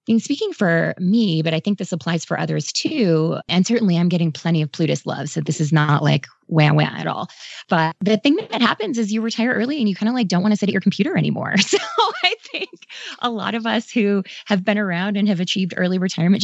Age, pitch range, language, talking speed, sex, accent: 20-39, 155-200 Hz, English, 250 wpm, female, American